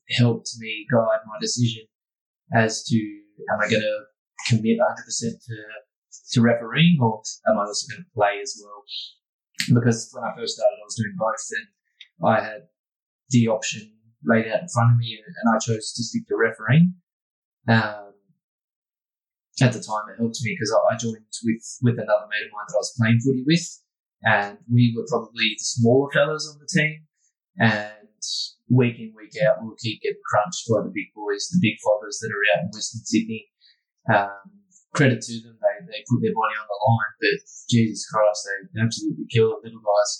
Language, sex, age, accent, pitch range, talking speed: English, male, 20-39, Australian, 105-130 Hz, 190 wpm